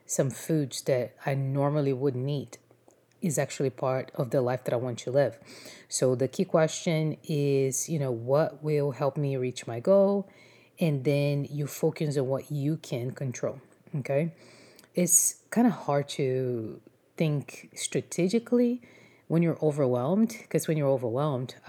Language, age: English, 20-39